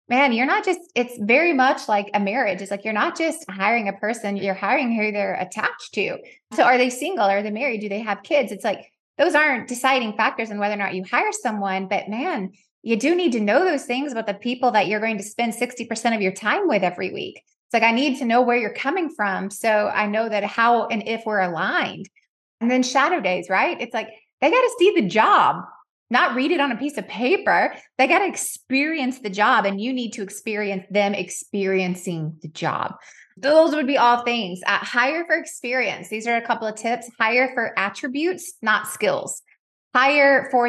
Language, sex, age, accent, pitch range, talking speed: English, female, 20-39, American, 205-260 Hz, 220 wpm